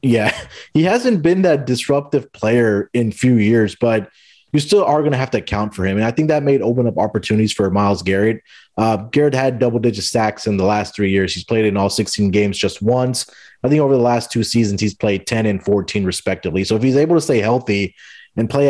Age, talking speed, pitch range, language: 20-39, 235 wpm, 100-125 Hz, English